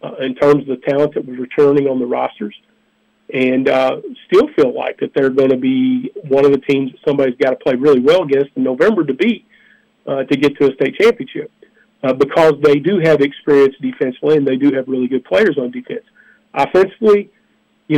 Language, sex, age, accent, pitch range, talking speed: English, male, 40-59, American, 135-155 Hz, 210 wpm